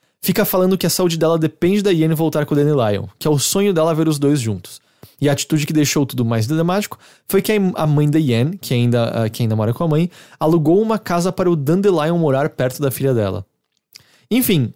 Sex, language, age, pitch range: male, English, 20-39, 130-170 Hz